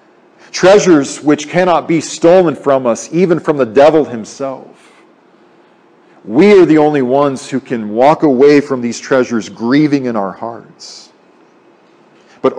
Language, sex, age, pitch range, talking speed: English, male, 40-59, 130-165 Hz, 140 wpm